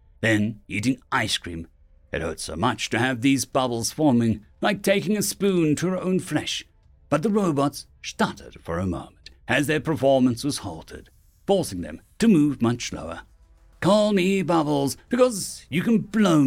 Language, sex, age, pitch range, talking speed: English, male, 60-79, 110-180 Hz, 170 wpm